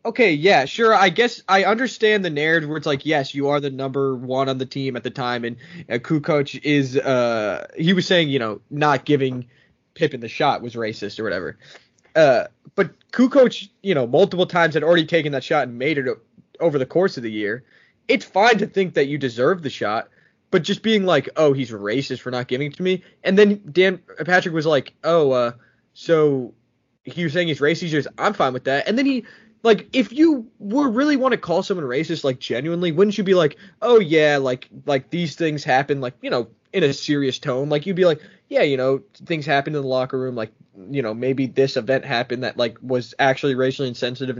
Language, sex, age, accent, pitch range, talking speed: English, male, 20-39, American, 130-185 Hz, 225 wpm